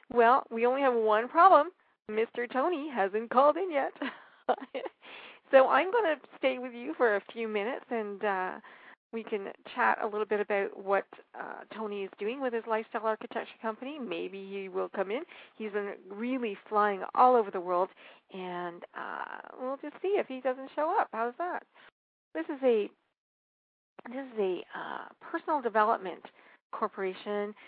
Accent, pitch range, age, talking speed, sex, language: American, 200-260 Hz, 50-69, 165 wpm, female, English